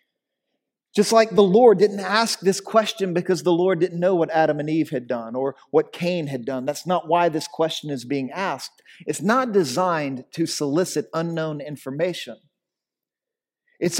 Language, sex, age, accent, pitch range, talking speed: English, male, 40-59, American, 145-180 Hz, 170 wpm